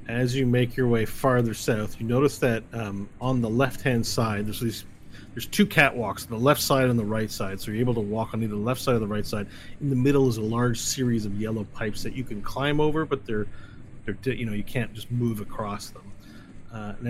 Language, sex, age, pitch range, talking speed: English, male, 30-49, 105-125 Hz, 240 wpm